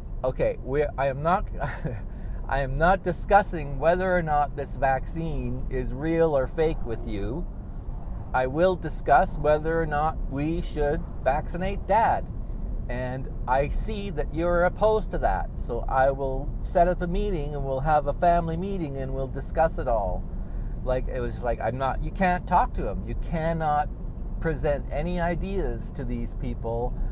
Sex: male